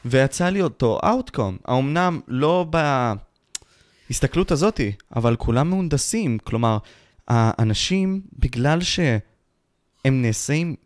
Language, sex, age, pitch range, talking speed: Hebrew, male, 20-39, 110-155 Hz, 90 wpm